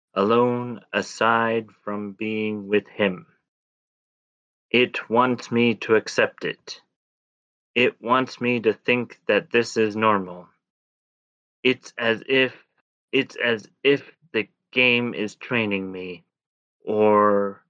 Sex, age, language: male, 30-49, English